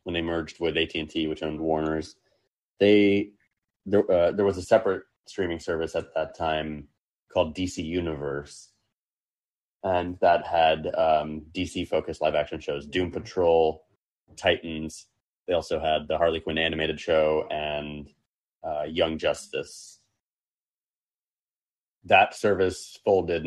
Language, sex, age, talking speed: English, male, 30-49, 125 wpm